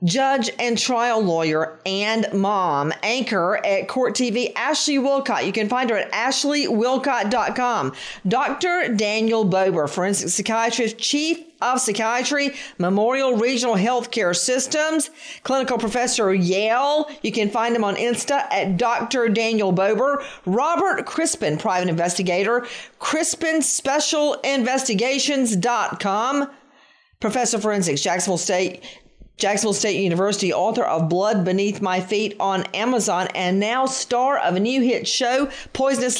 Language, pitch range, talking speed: English, 195-265 Hz, 125 wpm